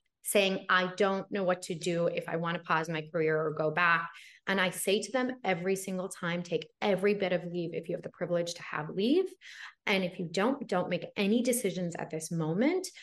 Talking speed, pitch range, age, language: 225 wpm, 165-200 Hz, 20-39, English